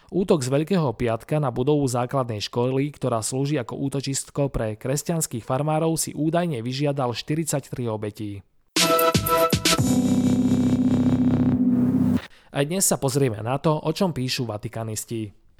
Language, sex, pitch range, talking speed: Slovak, male, 120-160 Hz, 115 wpm